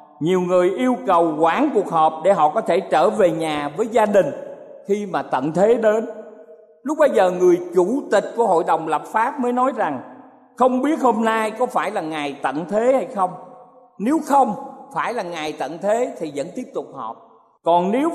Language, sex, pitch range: Thai, male, 180-250 Hz